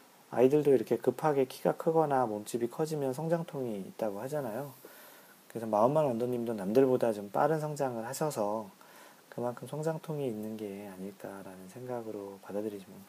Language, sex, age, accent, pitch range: Korean, male, 40-59, native, 105-140 Hz